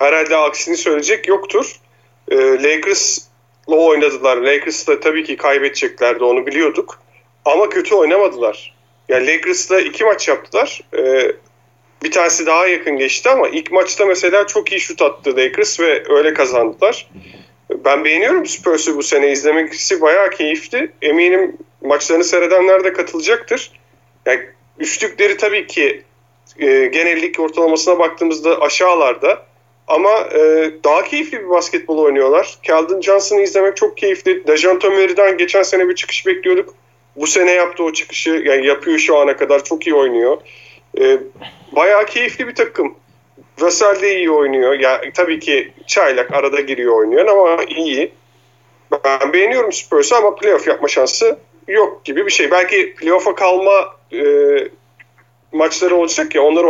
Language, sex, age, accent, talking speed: Turkish, male, 40-59, native, 135 wpm